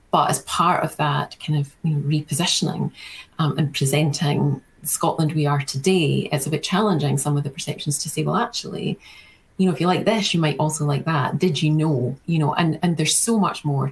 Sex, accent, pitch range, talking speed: female, British, 145-165 Hz, 225 wpm